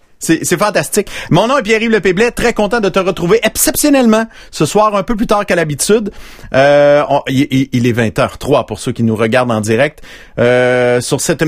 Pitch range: 130-170 Hz